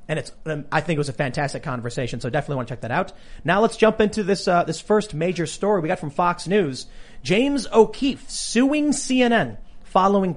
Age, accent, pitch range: 30-49, American, 145-195 Hz